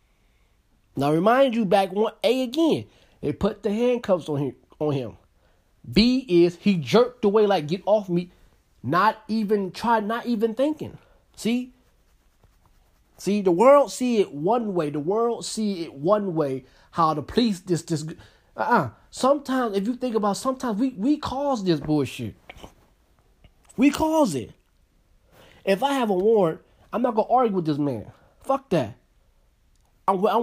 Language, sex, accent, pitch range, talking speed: English, male, American, 150-225 Hz, 160 wpm